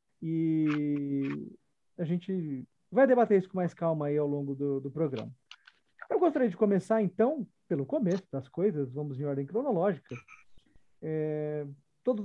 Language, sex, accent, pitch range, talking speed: Portuguese, male, Brazilian, 155-210 Hz, 145 wpm